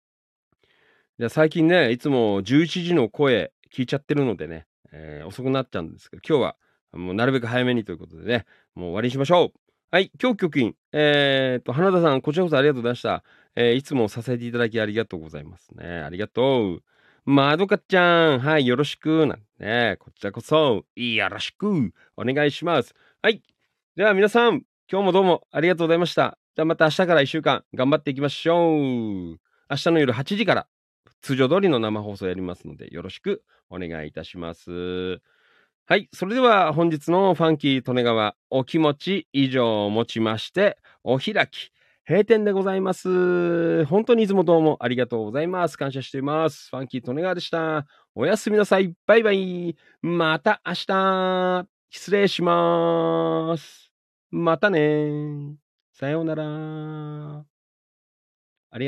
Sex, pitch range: male, 120-175 Hz